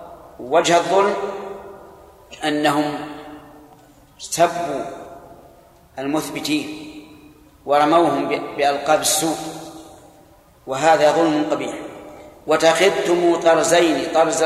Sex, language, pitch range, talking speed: male, Arabic, 150-170 Hz, 60 wpm